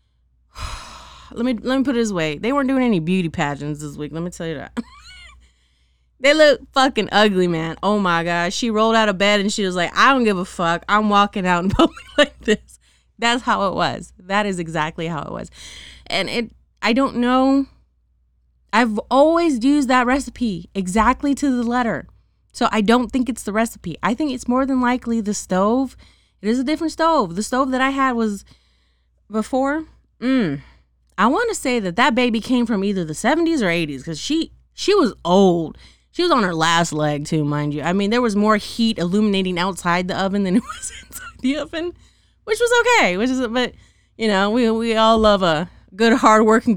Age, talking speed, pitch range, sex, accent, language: 20-39, 205 wpm, 170-255 Hz, female, American, English